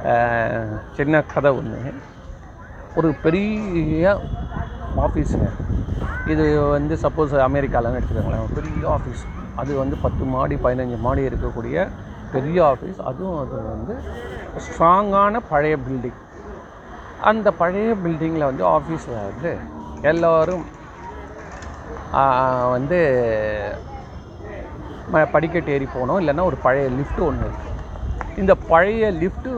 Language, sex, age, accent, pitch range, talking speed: Tamil, male, 40-59, native, 120-165 Hz, 95 wpm